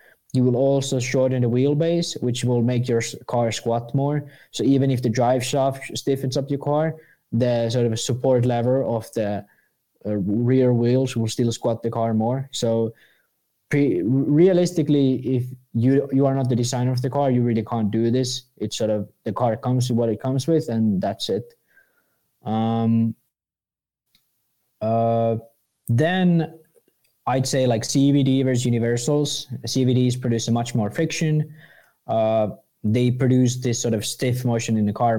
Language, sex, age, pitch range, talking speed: English, male, 20-39, 115-140 Hz, 165 wpm